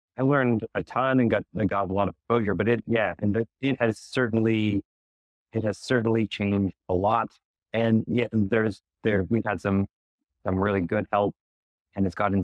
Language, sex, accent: English, male, American